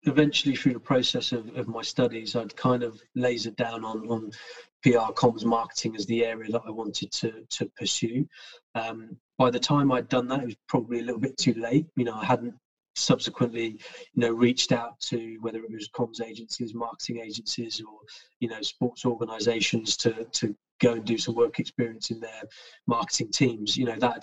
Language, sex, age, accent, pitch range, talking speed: English, male, 20-39, British, 115-125 Hz, 195 wpm